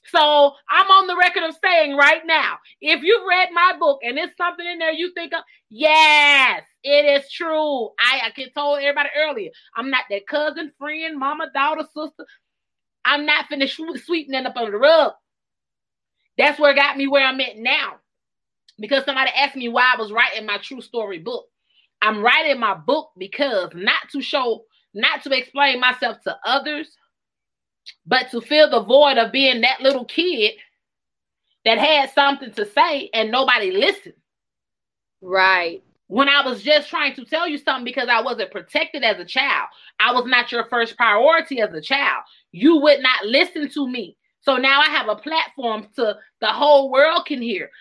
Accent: American